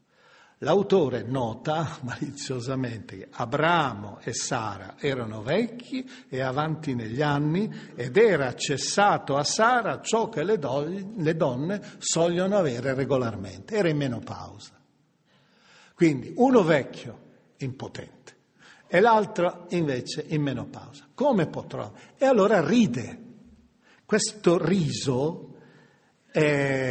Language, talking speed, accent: Italian, 105 wpm, native